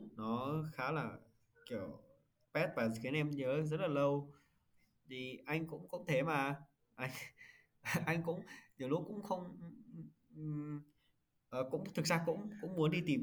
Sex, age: male, 20-39